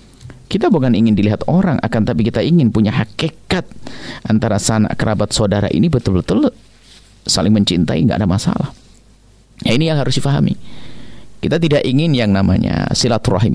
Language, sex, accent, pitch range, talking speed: Indonesian, male, native, 105-135 Hz, 145 wpm